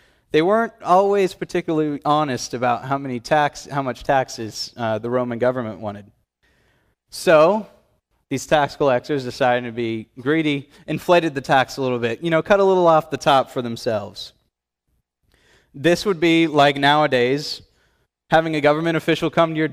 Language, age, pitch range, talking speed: English, 20-39, 120-165 Hz, 160 wpm